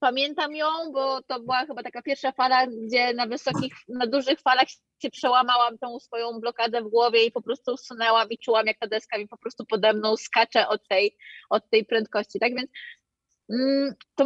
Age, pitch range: 20-39, 220-270 Hz